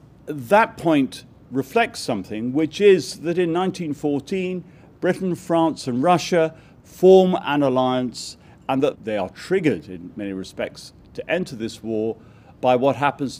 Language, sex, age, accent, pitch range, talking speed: English, male, 50-69, British, 115-165 Hz, 140 wpm